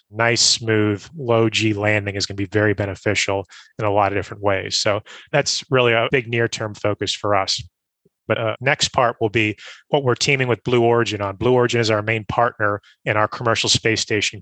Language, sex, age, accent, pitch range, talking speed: English, male, 30-49, American, 105-115 Hz, 205 wpm